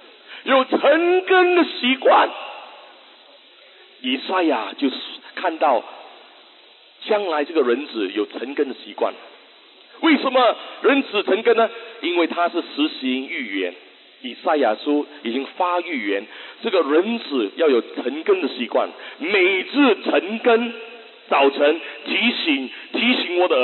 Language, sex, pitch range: English, male, 225-325 Hz